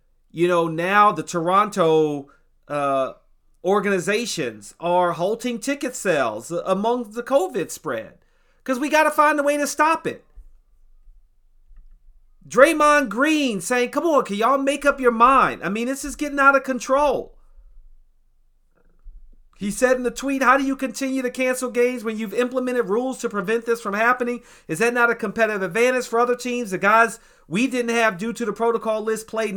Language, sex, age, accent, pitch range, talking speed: English, male, 40-59, American, 190-255 Hz, 170 wpm